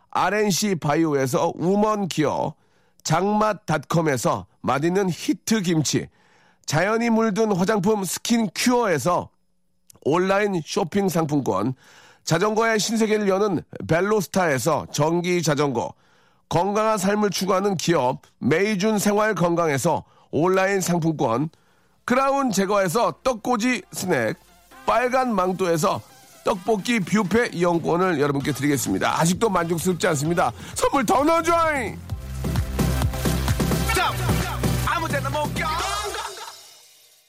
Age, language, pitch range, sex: 40-59, Korean, 145-210 Hz, male